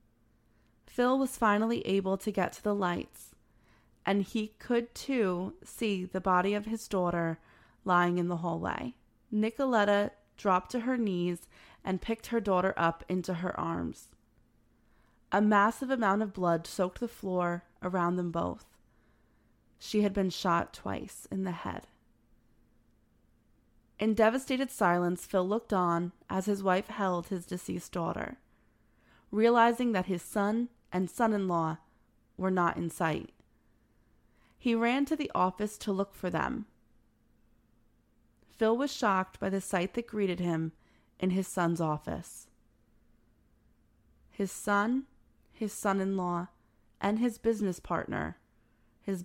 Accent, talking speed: American, 135 wpm